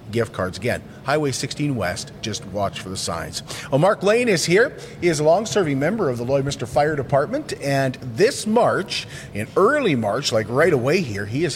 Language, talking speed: English, 190 wpm